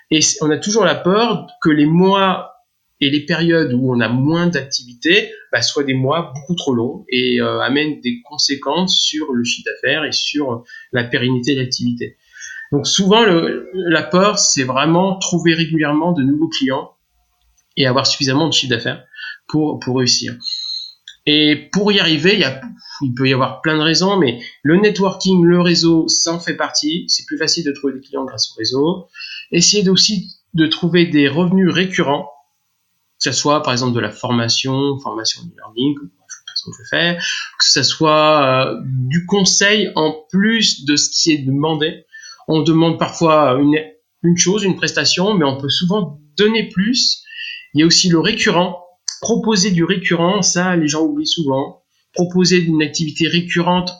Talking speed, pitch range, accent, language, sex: 180 wpm, 140-185 Hz, French, French, male